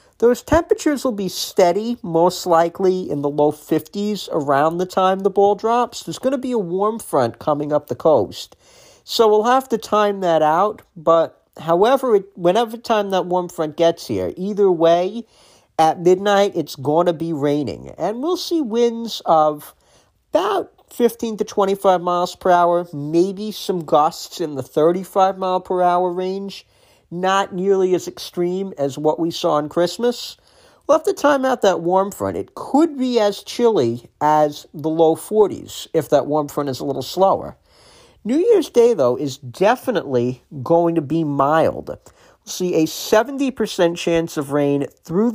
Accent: American